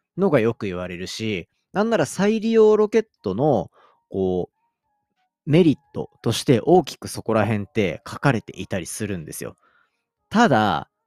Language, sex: Japanese, male